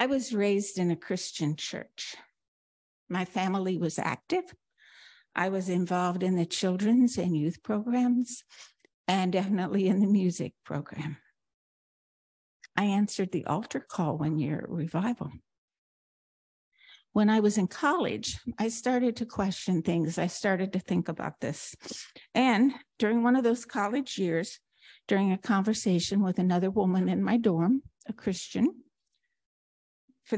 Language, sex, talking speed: English, female, 135 wpm